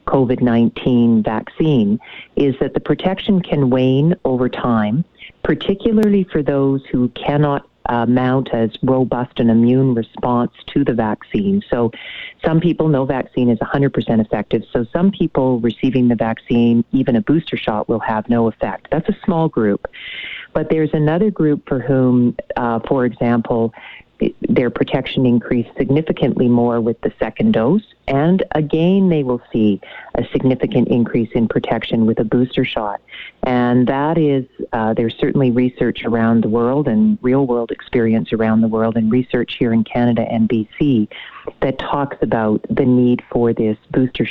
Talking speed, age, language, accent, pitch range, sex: 155 wpm, 40-59, English, American, 115-145 Hz, female